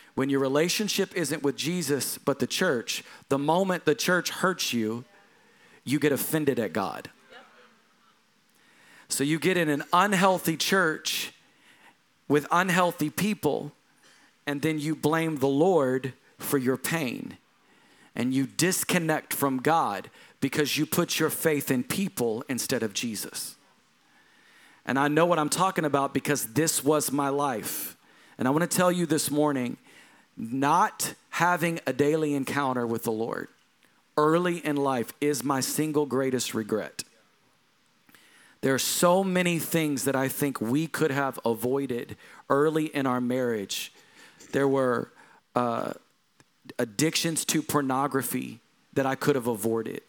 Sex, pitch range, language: male, 135-165 Hz, English